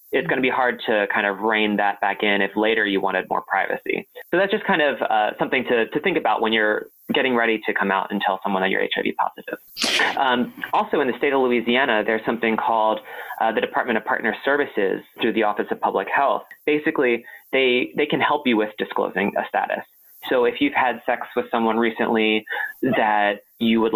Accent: American